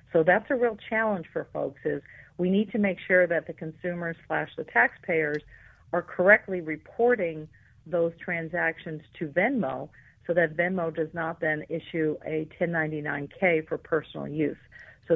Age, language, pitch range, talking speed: 50-69, English, 155-180 Hz, 155 wpm